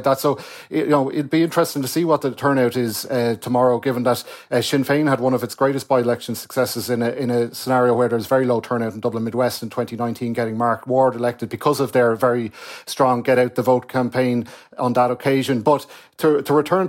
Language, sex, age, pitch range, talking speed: English, male, 40-59, 125-140 Hz, 225 wpm